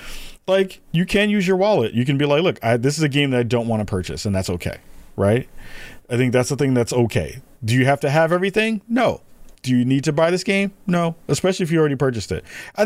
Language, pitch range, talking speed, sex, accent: English, 110-150 Hz, 250 wpm, male, American